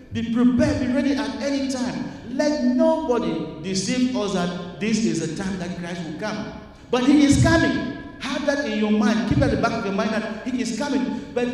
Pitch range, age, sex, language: 180-245 Hz, 50-69, male, English